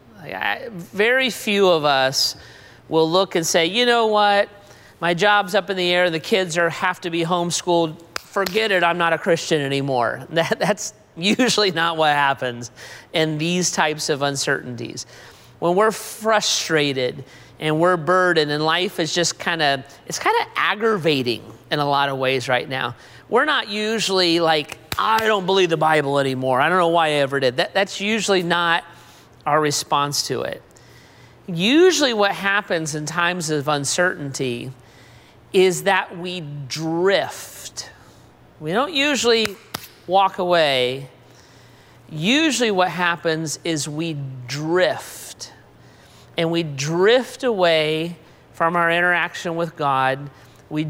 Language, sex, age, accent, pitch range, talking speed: English, male, 40-59, American, 140-190 Hz, 145 wpm